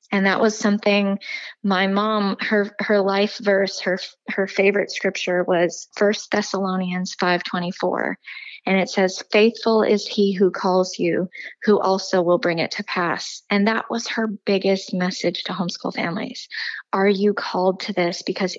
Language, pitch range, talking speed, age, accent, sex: English, 190-220 Hz, 160 wpm, 20-39, American, female